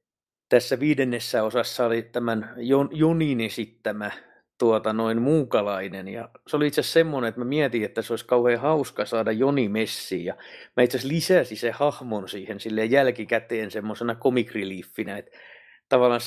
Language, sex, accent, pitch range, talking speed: Finnish, male, native, 110-130 Hz, 140 wpm